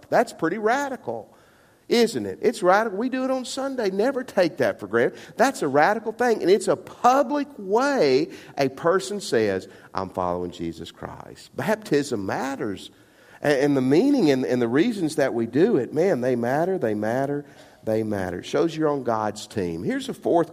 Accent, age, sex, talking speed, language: American, 50-69, male, 180 wpm, English